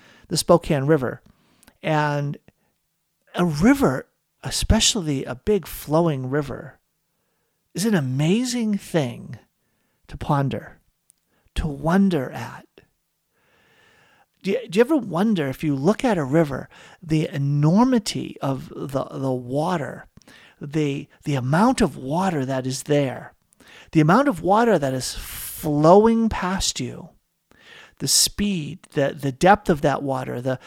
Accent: American